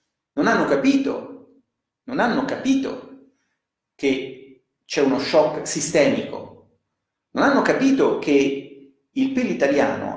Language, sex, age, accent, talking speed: Italian, male, 40-59, native, 100 wpm